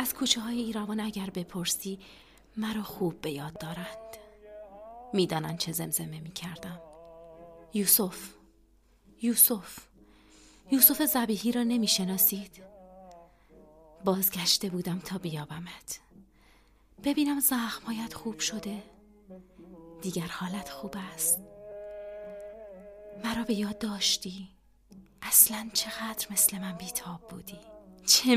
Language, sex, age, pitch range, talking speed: Persian, female, 30-49, 175-220 Hz, 95 wpm